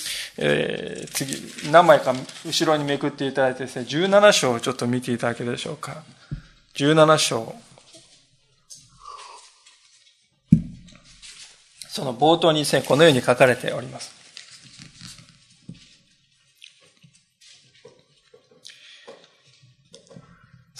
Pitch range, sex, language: 130-175 Hz, male, Japanese